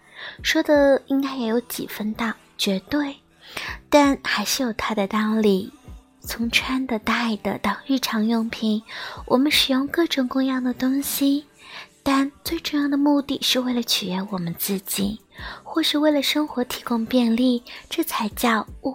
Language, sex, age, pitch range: Chinese, female, 20-39, 215-275 Hz